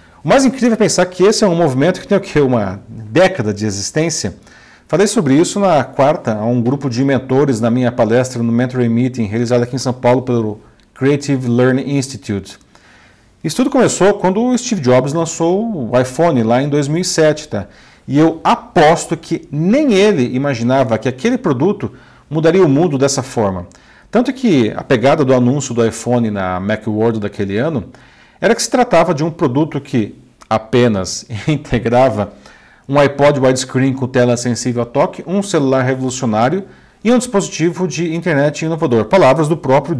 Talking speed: 170 wpm